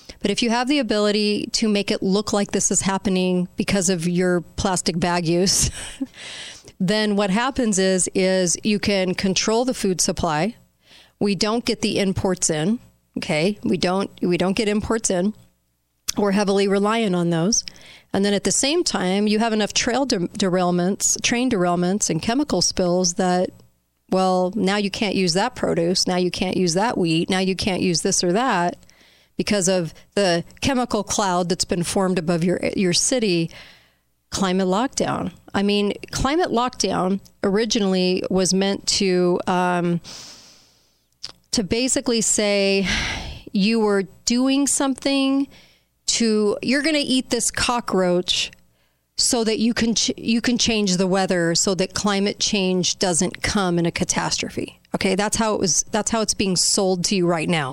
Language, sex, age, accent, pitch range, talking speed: English, female, 40-59, American, 180-220 Hz, 165 wpm